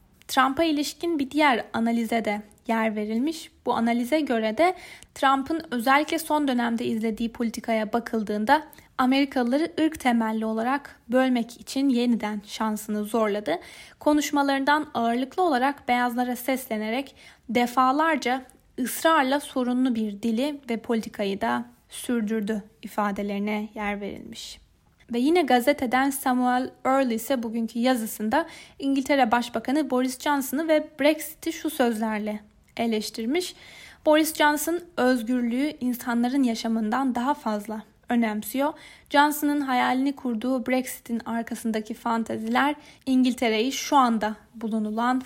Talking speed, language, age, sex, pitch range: 105 wpm, Turkish, 10-29, female, 230-285 Hz